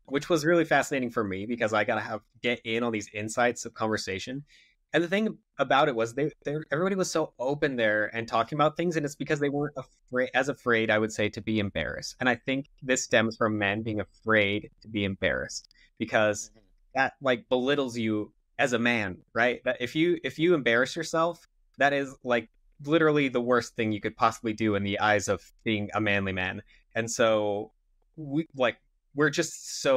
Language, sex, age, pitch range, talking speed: English, male, 20-39, 105-130 Hz, 205 wpm